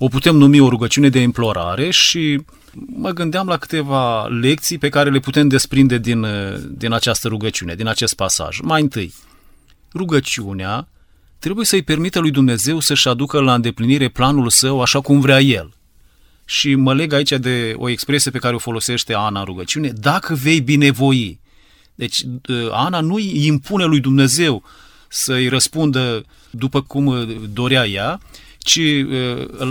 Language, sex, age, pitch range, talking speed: Romanian, male, 30-49, 115-145 Hz, 150 wpm